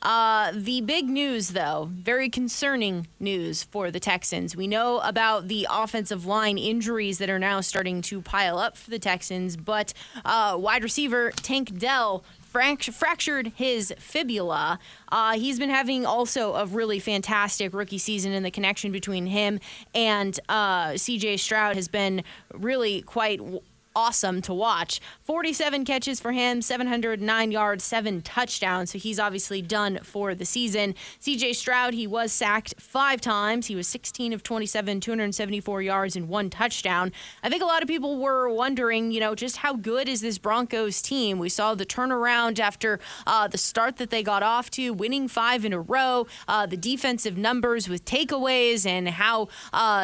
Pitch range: 200-245 Hz